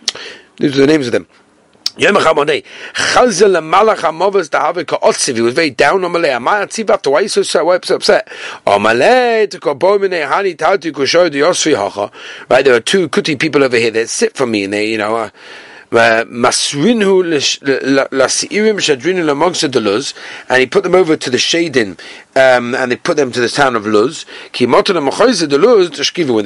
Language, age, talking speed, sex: English, 40-59, 100 wpm, male